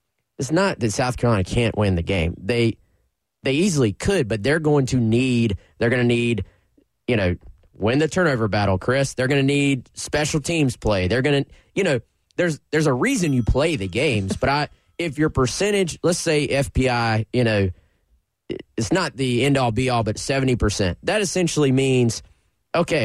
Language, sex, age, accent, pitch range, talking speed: English, male, 20-39, American, 105-135 Hz, 180 wpm